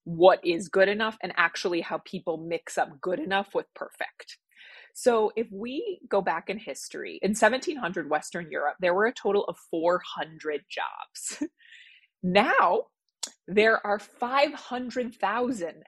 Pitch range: 180-255 Hz